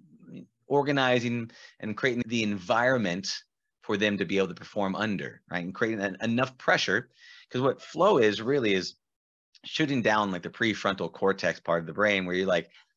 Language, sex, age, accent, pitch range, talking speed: English, male, 30-49, American, 100-125 Hz, 170 wpm